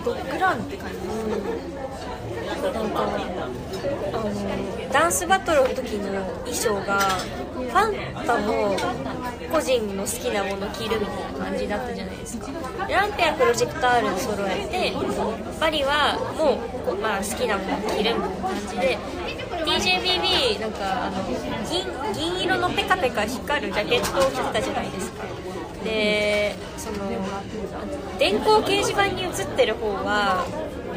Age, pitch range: 20-39, 210-325 Hz